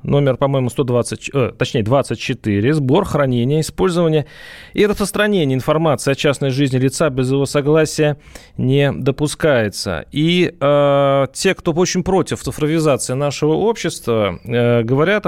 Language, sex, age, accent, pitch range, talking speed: Russian, male, 30-49, native, 125-160 Hz, 120 wpm